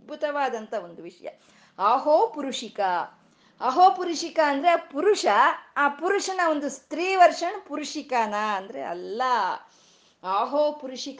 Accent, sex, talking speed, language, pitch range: native, female, 100 wpm, Kannada, 210-300 Hz